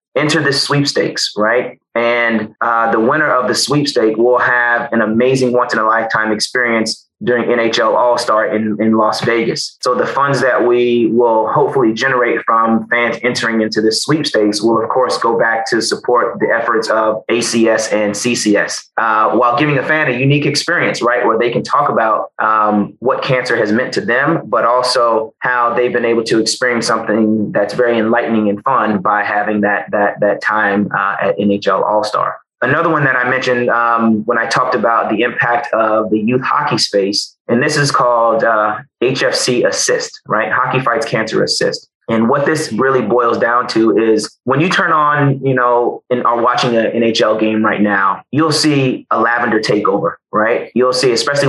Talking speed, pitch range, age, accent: 185 wpm, 110-125 Hz, 30-49, American